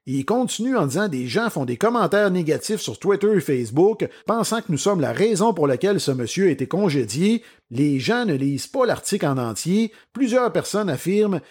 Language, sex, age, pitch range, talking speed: French, male, 50-69, 145-215 Hz, 200 wpm